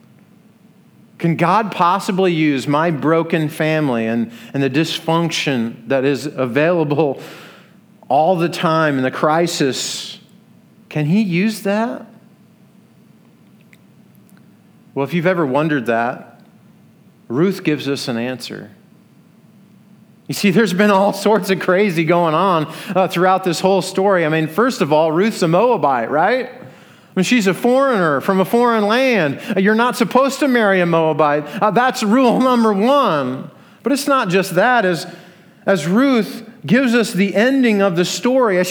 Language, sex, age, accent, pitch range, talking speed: English, male, 40-59, American, 165-210 Hz, 150 wpm